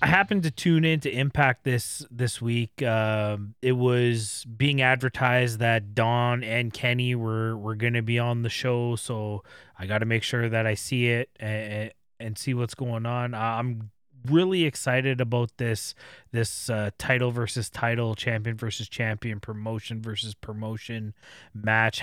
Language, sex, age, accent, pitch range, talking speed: English, male, 20-39, American, 110-130 Hz, 165 wpm